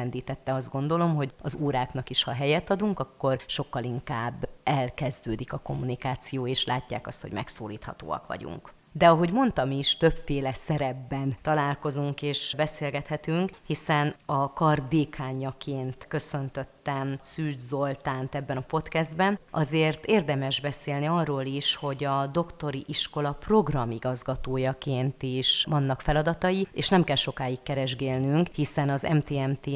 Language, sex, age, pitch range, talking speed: Hungarian, female, 30-49, 135-155 Hz, 120 wpm